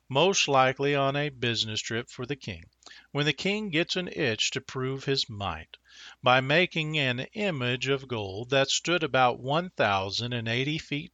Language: English